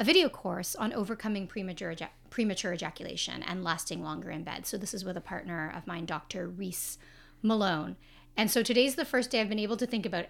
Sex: female